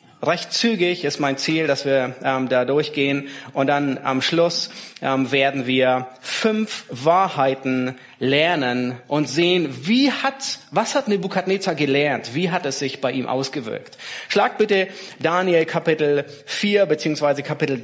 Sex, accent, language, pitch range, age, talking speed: male, German, German, 155-210 Hz, 30-49, 140 wpm